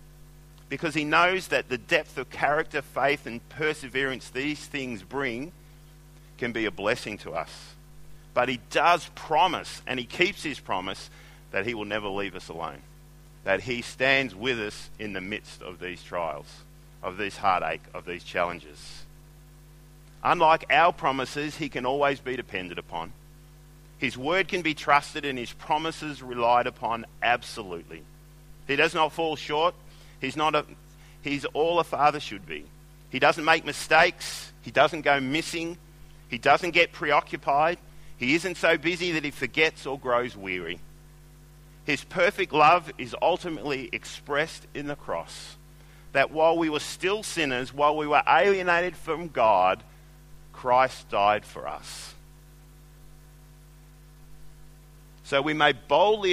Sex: male